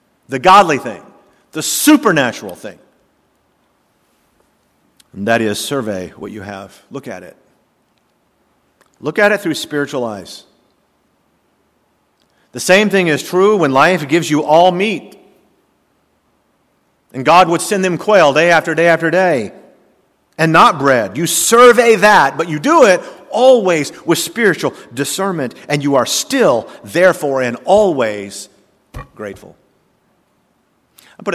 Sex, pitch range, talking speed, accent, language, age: male, 125-195 Hz, 130 wpm, American, English, 50-69